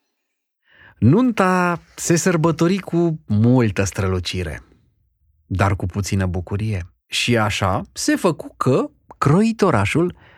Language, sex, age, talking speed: Romanian, male, 30-49, 95 wpm